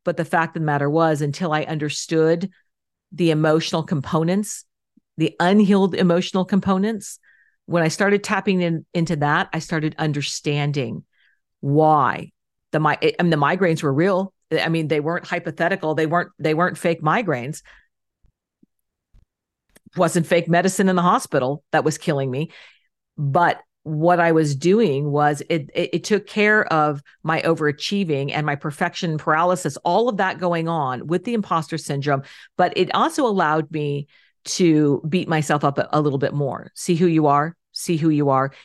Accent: American